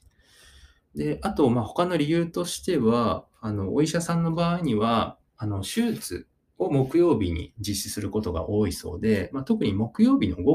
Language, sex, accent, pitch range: Japanese, male, native, 95-145 Hz